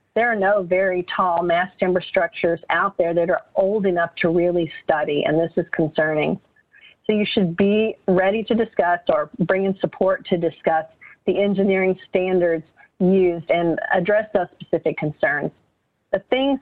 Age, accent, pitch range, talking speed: 40-59, American, 170-195 Hz, 165 wpm